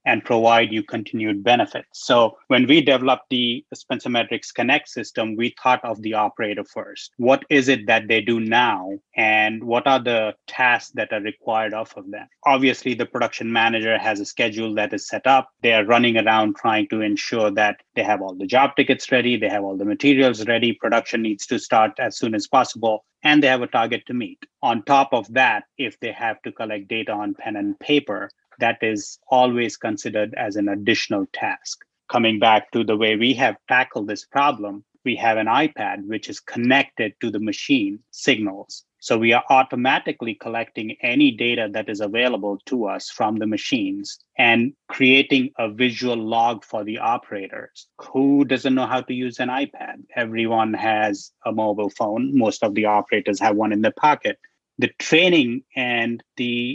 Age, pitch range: 30-49, 110-135 Hz